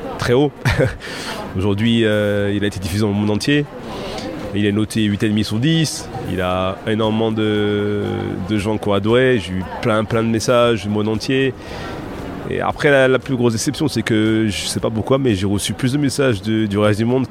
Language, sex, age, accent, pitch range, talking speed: French, male, 30-49, French, 100-115 Hz, 205 wpm